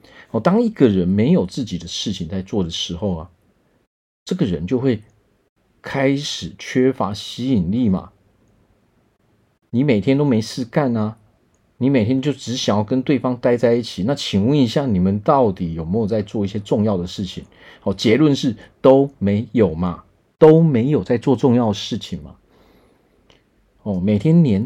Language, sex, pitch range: Chinese, male, 100-135 Hz